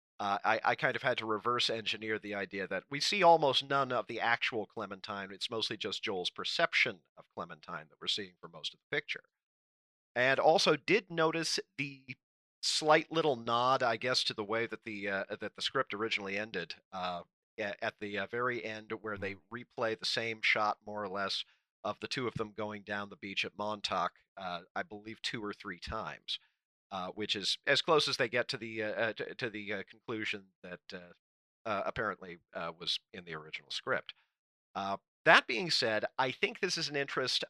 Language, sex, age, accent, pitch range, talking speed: English, male, 40-59, American, 100-125 Hz, 195 wpm